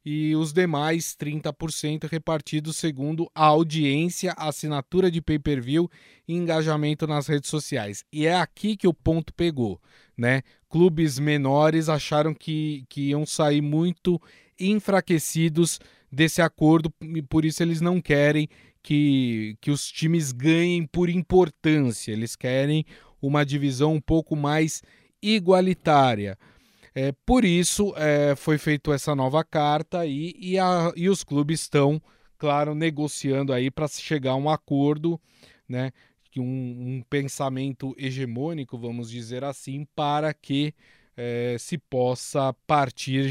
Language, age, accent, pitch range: Portuguese, 20-39, Brazilian, 135-160 Hz